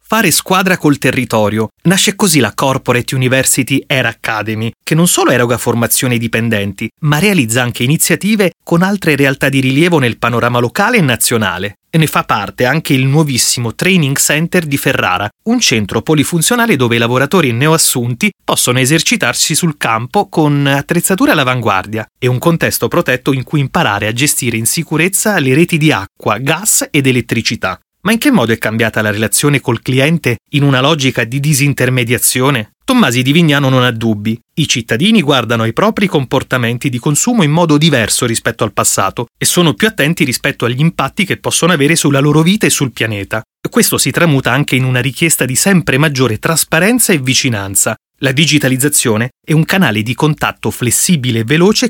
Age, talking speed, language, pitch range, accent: 30-49, 170 wpm, Italian, 120-165 Hz, native